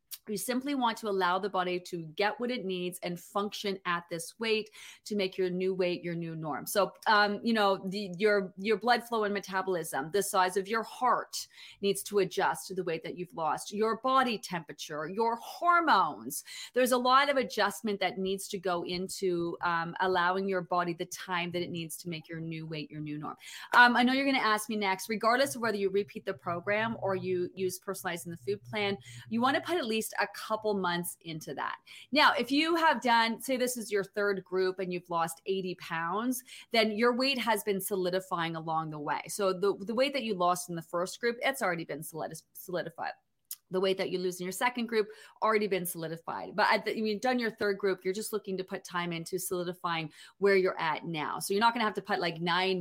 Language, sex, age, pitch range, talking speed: English, female, 30-49, 175-220 Hz, 220 wpm